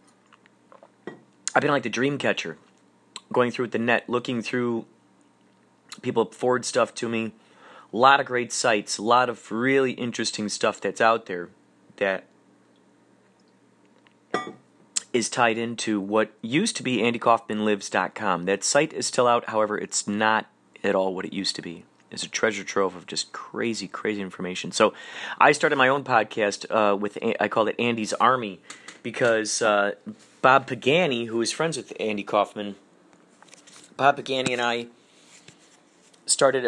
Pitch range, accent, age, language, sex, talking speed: 110-130 Hz, American, 30-49, English, male, 150 wpm